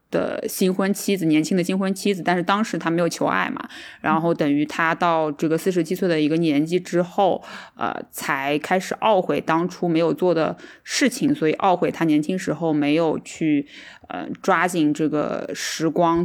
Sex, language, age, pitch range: female, Chinese, 20-39, 160-200 Hz